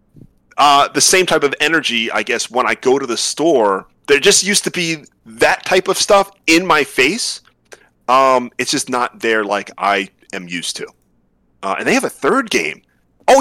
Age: 30-49